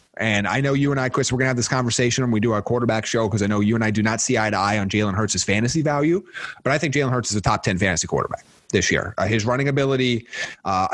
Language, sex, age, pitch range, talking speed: English, male, 30-49, 115-145 Hz, 295 wpm